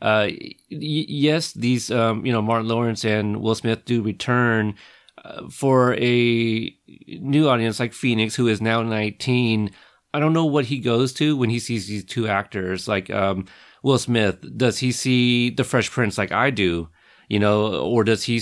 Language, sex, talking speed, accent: English, male, 180 wpm, American